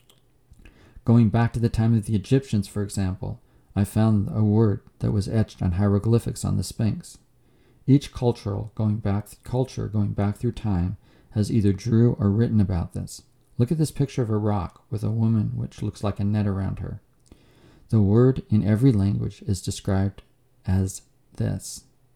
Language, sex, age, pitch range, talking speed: English, male, 40-59, 100-120 Hz, 165 wpm